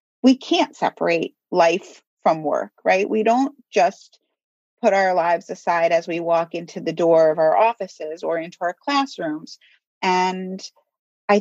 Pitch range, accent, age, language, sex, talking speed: 175-235 Hz, American, 30-49, English, female, 155 wpm